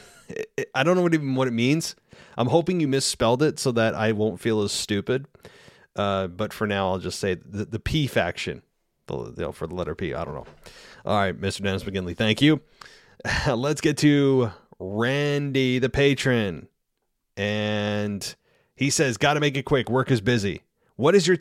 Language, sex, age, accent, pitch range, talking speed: English, male, 30-49, American, 100-130 Hz, 190 wpm